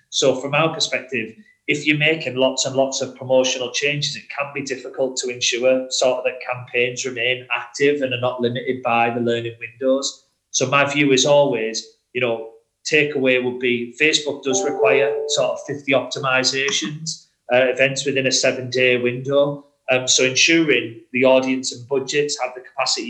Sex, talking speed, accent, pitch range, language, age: male, 170 wpm, British, 120-140 Hz, English, 30-49